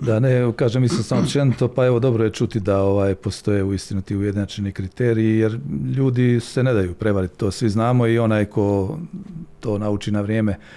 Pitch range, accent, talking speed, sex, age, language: 100-120 Hz, native, 190 wpm, male, 50-69, Croatian